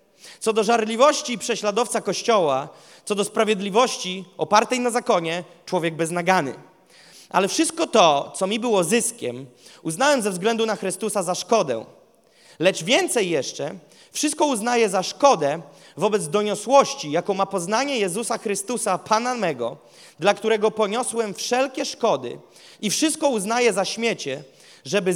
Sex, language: male, Polish